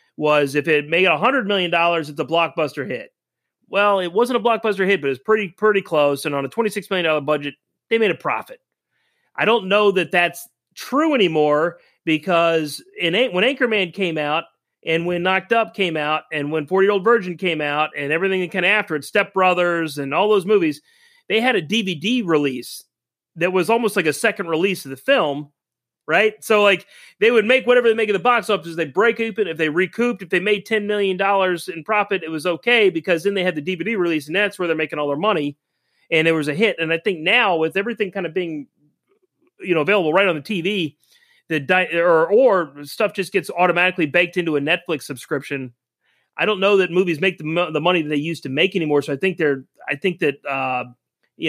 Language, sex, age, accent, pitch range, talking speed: English, male, 40-59, American, 155-205 Hz, 220 wpm